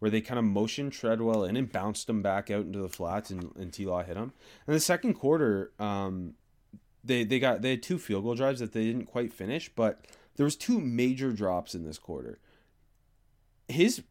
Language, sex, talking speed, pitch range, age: English, male, 215 wpm, 100-130 Hz, 20-39